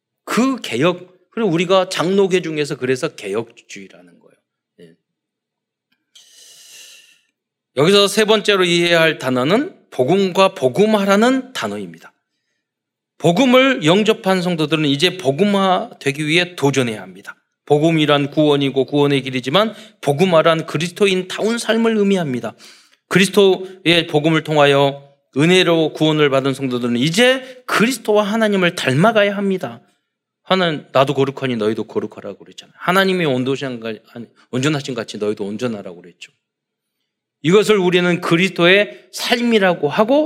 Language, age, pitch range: Korean, 40-59, 145-210 Hz